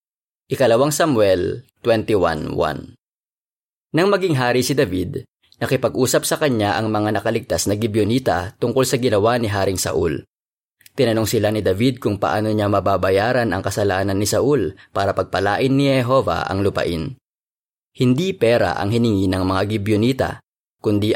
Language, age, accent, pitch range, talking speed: Filipino, 20-39, native, 95-125 Hz, 135 wpm